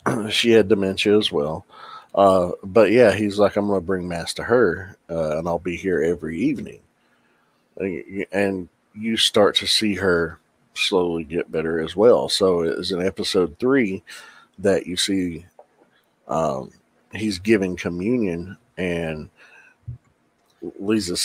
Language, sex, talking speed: English, male, 140 wpm